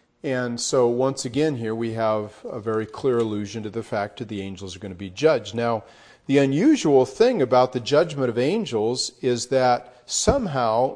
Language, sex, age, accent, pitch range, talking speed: English, male, 40-59, American, 110-135 Hz, 185 wpm